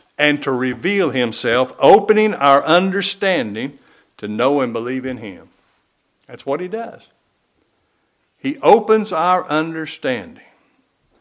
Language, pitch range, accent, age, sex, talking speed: English, 135-190 Hz, American, 60-79, male, 110 wpm